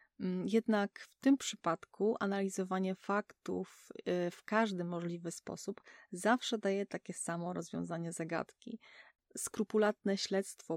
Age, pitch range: 30-49, 175-210 Hz